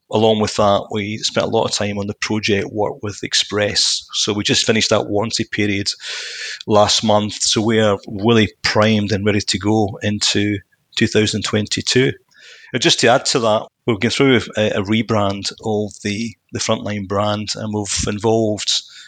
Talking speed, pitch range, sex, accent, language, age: 175 wpm, 105-110 Hz, male, British, English, 30-49